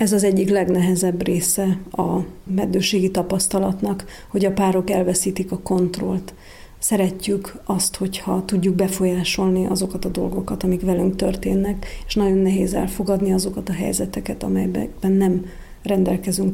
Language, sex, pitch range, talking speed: Hungarian, female, 185-200 Hz, 125 wpm